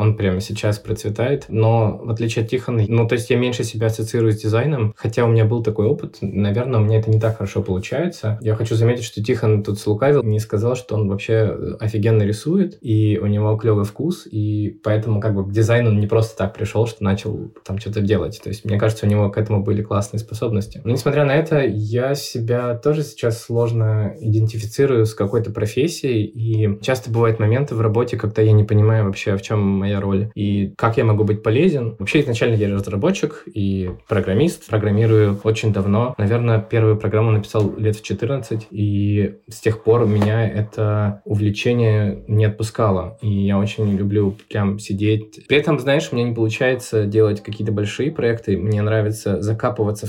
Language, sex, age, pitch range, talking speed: Russian, male, 20-39, 105-115 Hz, 185 wpm